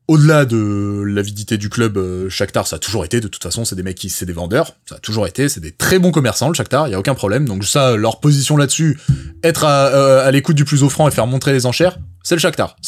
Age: 20-39